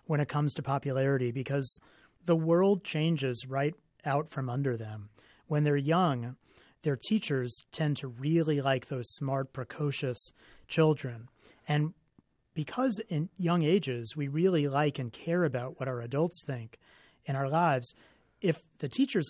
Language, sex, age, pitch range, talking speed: English, male, 40-59, 135-175 Hz, 150 wpm